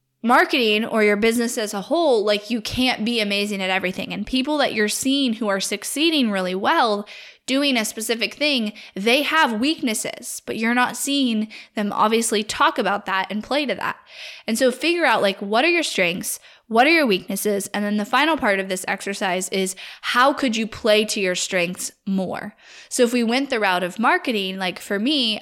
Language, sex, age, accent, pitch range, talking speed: English, female, 10-29, American, 200-250 Hz, 200 wpm